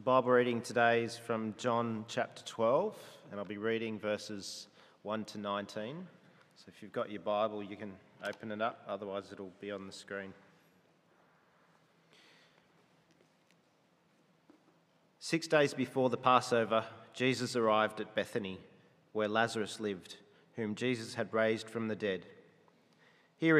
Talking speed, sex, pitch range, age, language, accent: 135 wpm, male, 105-130 Hz, 40-59, English, Australian